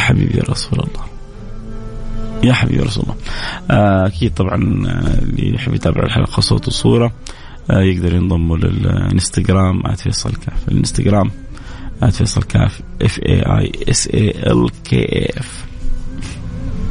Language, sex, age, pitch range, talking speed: English, male, 30-49, 95-125 Hz, 80 wpm